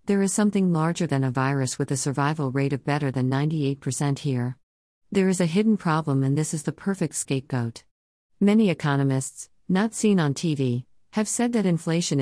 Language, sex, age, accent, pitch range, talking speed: English, female, 50-69, American, 130-160 Hz, 180 wpm